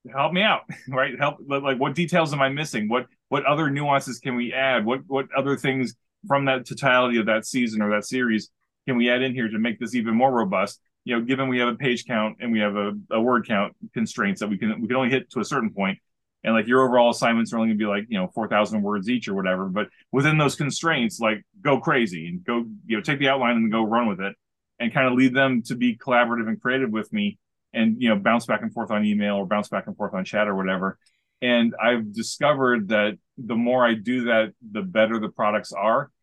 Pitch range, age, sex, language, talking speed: 110-140 Hz, 30-49, male, English, 250 wpm